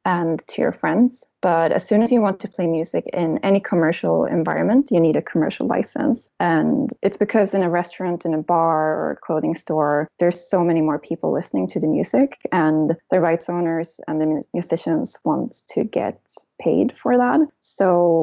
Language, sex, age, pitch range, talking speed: English, female, 20-39, 160-195 Hz, 190 wpm